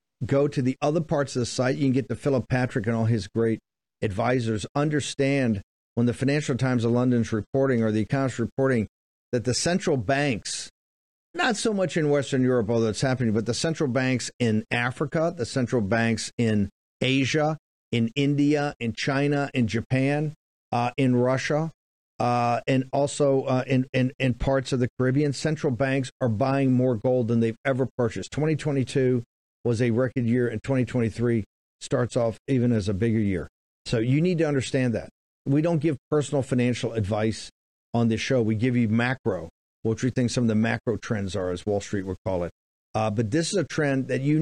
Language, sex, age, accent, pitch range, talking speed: English, male, 50-69, American, 115-135 Hz, 195 wpm